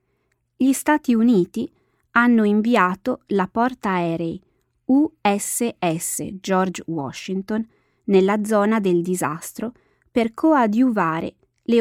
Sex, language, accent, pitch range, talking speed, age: female, Italian, native, 175-230 Hz, 90 wpm, 20-39